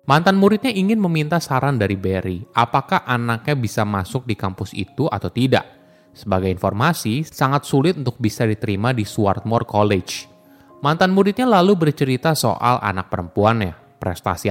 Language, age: Indonesian, 20-39